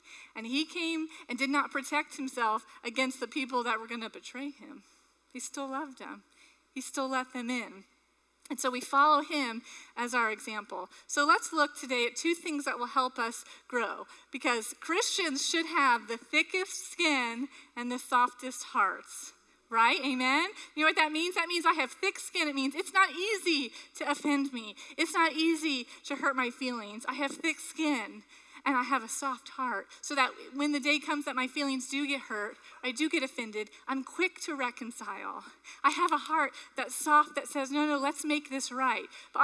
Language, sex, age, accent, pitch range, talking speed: English, female, 30-49, American, 250-315 Hz, 200 wpm